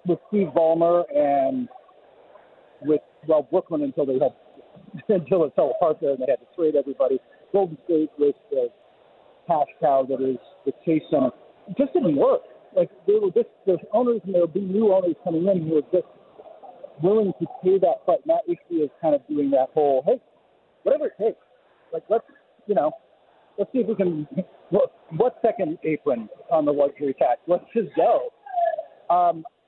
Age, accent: 50-69, American